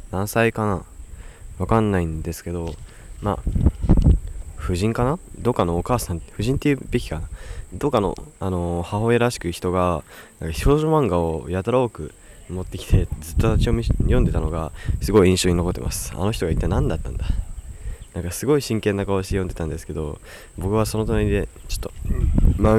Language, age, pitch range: Japanese, 20-39, 85-105 Hz